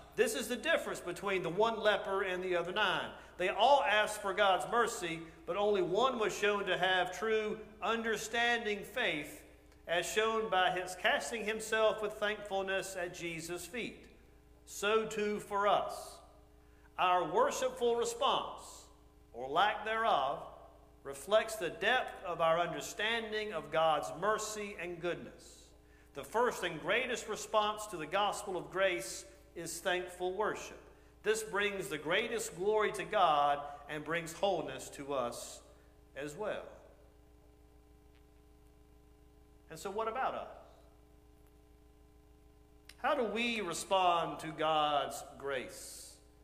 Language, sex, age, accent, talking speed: English, male, 50-69, American, 130 wpm